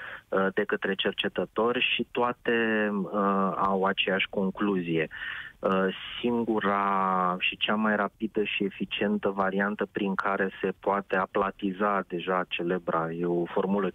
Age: 20-39